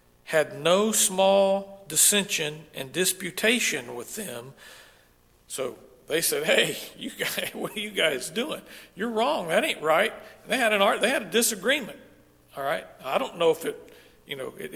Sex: male